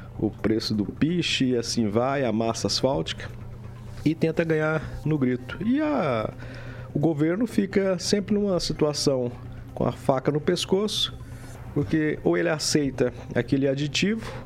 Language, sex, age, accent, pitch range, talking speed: Portuguese, male, 50-69, Brazilian, 115-150 Hz, 135 wpm